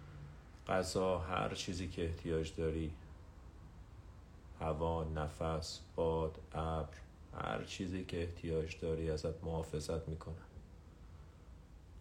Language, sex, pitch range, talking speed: Persian, male, 80-85 Hz, 90 wpm